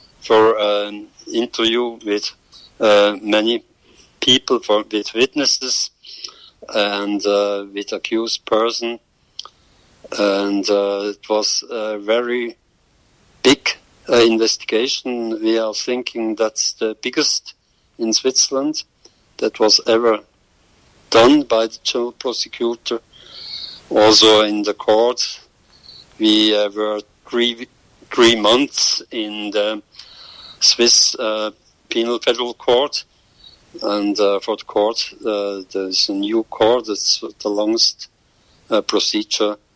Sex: male